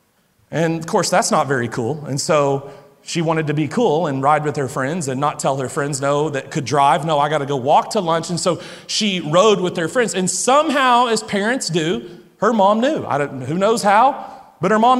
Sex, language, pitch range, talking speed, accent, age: male, English, 155-210 Hz, 235 wpm, American, 40-59